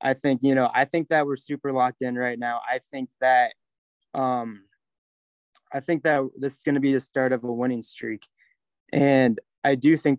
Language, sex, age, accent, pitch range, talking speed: English, male, 20-39, American, 120-135 Hz, 205 wpm